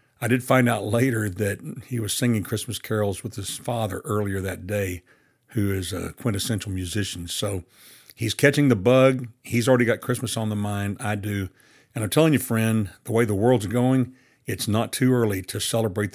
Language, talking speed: English, 195 wpm